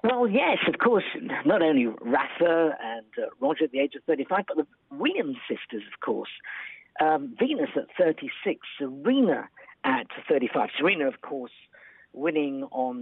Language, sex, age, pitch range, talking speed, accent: English, female, 50-69, 135-200 Hz, 150 wpm, British